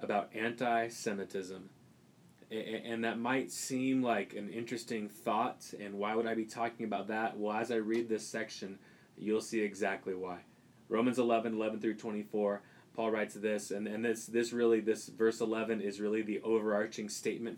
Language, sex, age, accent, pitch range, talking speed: English, male, 20-39, American, 105-115 Hz, 165 wpm